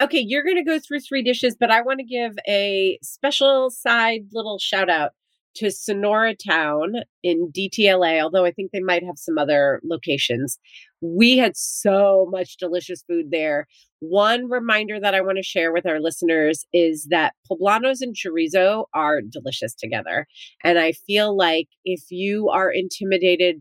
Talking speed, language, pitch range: 170 wpm, English, 165-215 Hz